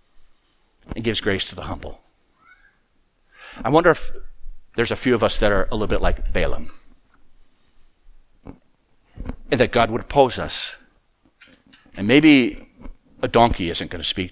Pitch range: 105-145 Hz